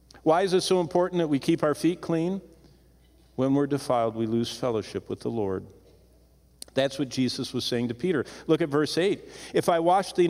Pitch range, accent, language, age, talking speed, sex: 120-180 Hz, American, English, 50-69, 205 wpm, male